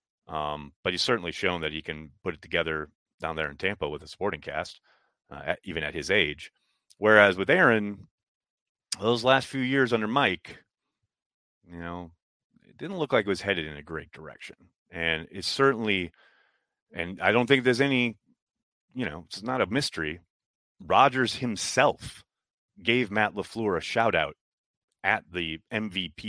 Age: 30-49